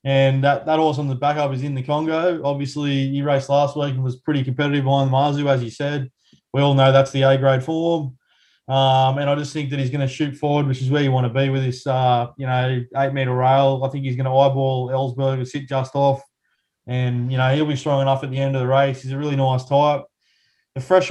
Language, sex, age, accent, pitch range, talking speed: English, male, 20-39, Australian, 135-150 Hz, 255 wpm